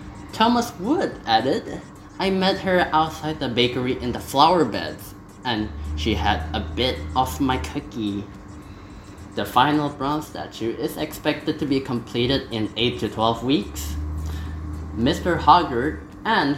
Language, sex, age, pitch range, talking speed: English, male, 20-39, 100-145 Hz, 140 wpm